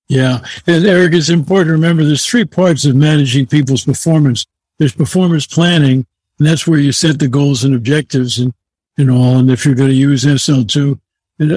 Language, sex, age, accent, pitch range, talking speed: English, male, 60-79, American, 140-165 Hz, 190 wpm